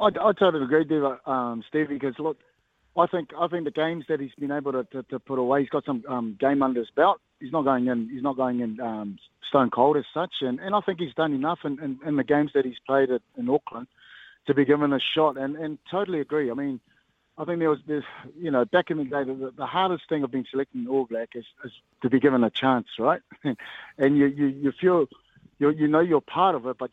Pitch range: 125-150 Hz